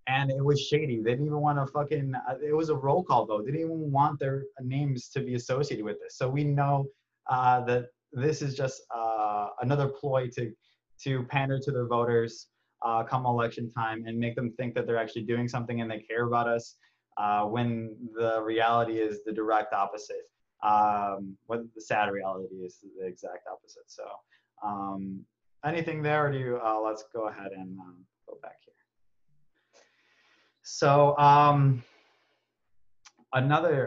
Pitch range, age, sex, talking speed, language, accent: 110-140 Hz, 20-39, male, 175 wpm, English, American